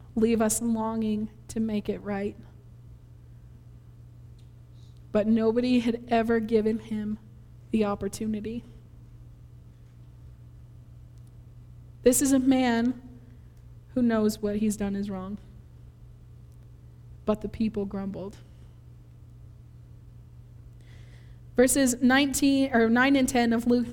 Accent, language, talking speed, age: American, English, 95 wpm, 20-39